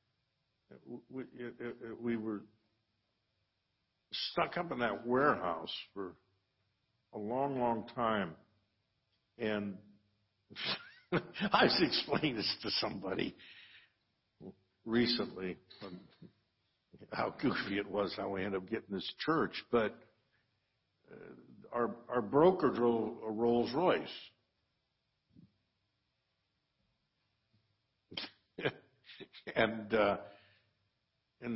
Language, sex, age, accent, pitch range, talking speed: English, male, 60-79, American, 100-125 Hz, 80 wpm